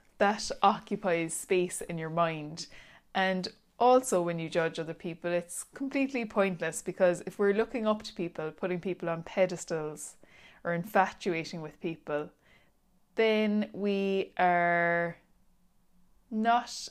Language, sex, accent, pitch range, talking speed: English, female, Irish, 170-205 Hz, 125 wpm